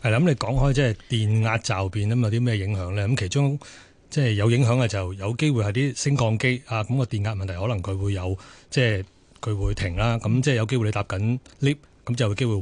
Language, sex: Chinese, male